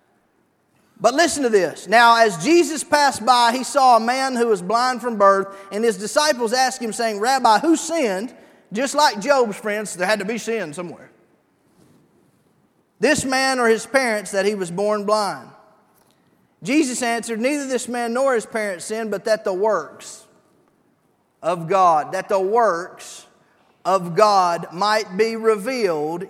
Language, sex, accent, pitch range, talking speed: English, male, American, 225-285 Hz, 160 wpm